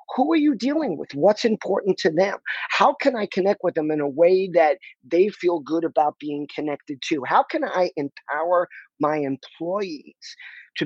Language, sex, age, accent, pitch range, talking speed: English, male, 40-59, American, 145-195 Hz, 180 wpm